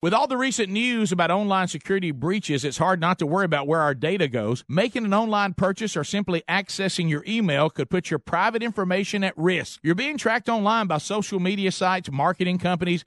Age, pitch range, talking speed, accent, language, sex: 50-69, 160-205 Hz, 205 wpm, American, English, male